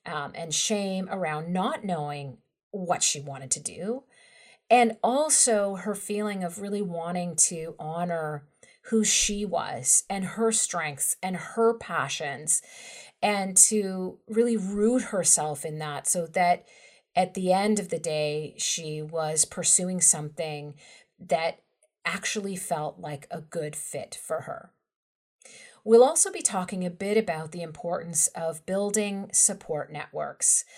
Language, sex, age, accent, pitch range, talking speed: English, female, 40-59, American, 165-210 Hz, 135 wpm